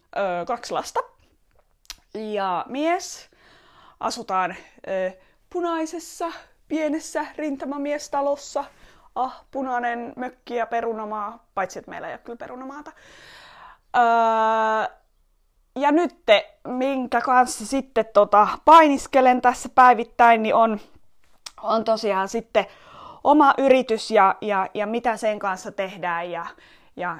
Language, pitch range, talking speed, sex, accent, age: Finnish, 195-270 Hz, 105 wpm, female, native, 20-39